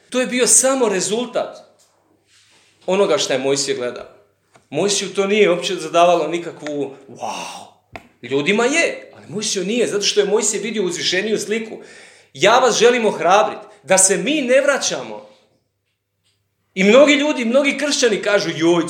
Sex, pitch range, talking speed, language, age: male, 165-275 Hz, 145 wpm, Croatian, 40-59